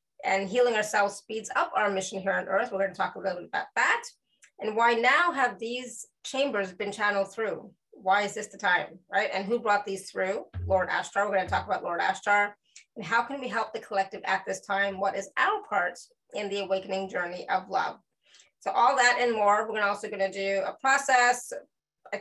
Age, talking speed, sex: 20-39, 220 wpm, female